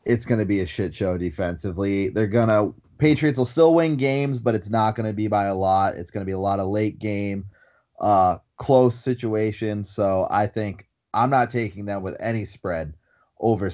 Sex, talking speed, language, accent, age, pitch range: male, 210 wpm, English, American, 30-49, 95-120 Hz